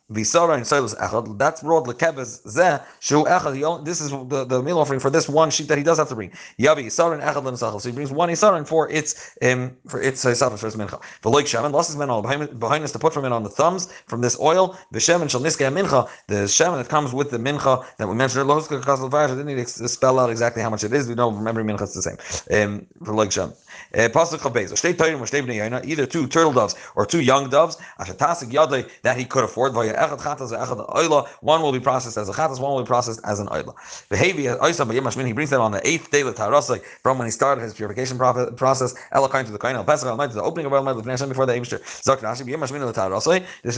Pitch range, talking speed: 120-150 Hz, 180 wpm